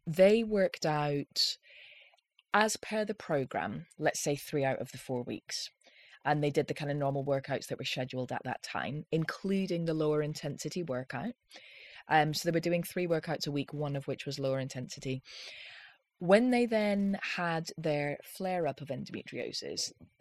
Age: 20-39